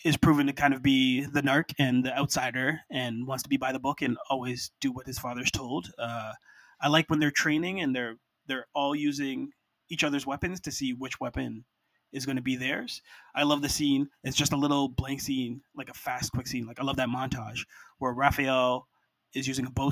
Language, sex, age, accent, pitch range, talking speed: English, male, 20-39, American, 130-150 Hz, 225 wpm